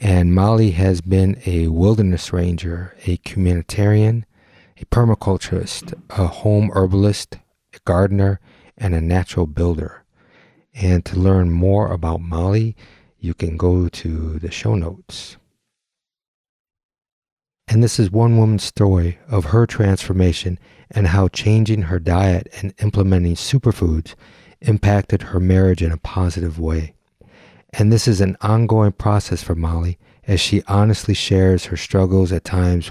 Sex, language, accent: male, English, American